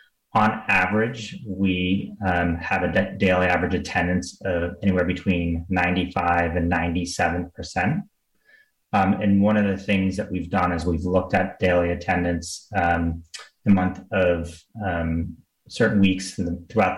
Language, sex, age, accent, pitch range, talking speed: English, male, 30-49, American, 90-100 Hz, 140 wpm